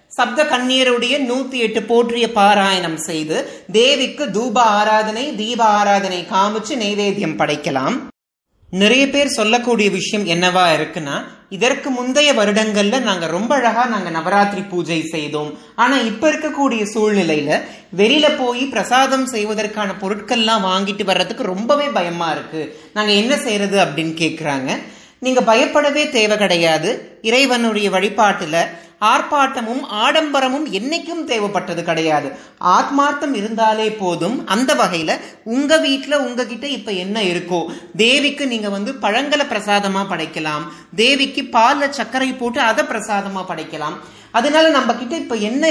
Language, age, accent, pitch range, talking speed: Tamil, 30-49, native, 190-265 Hz, 110 wpm